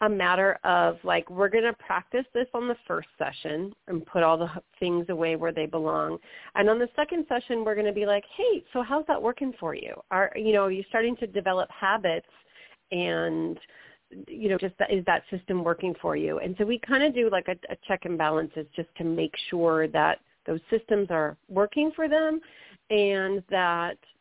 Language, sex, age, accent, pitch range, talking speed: English, female, 40-59, American, 170-235 Hz, 210 wpm